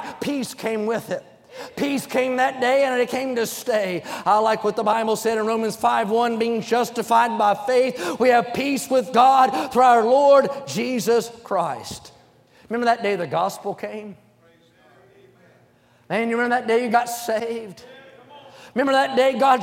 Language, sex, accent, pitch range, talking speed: English, male, American, 235-280 Hz, 170 wpm